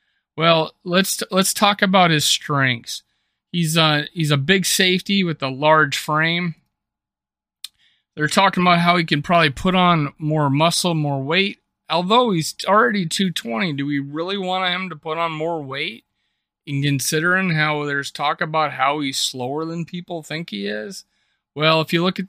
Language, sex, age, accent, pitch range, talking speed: English, male, 30-49, American, 135-170 Hz, 170 wpm